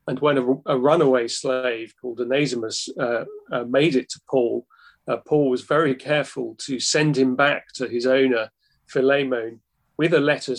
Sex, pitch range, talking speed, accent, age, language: male, 125-145 Hz, 170 wpm, British, 40-59, English